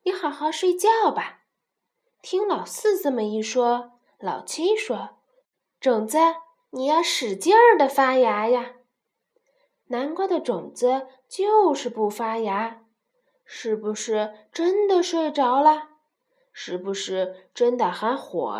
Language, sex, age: Chinese, female, 20-39